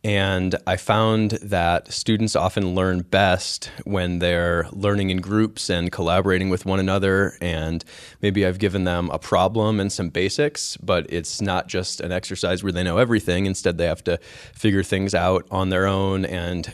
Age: 20-39